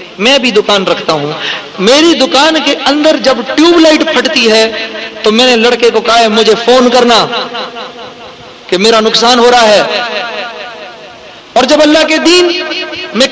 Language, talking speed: Urdu, 160 wpm